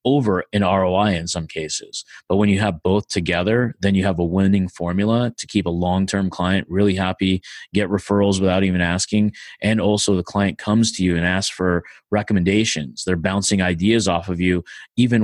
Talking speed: 195 wpm